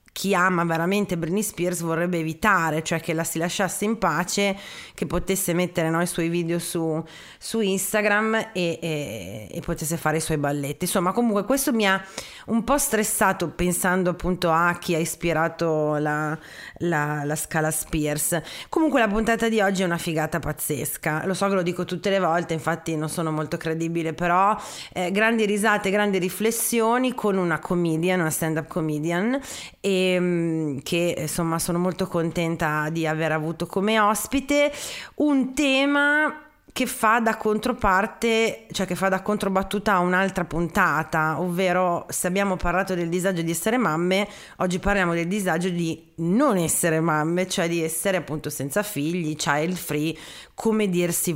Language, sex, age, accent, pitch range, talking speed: Italian, female, 30-49, native, 160-205 Hz, 160 wpm